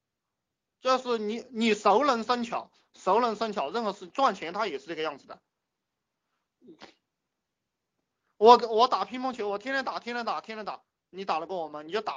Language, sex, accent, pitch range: Chinese, male, native, 165-230 Hz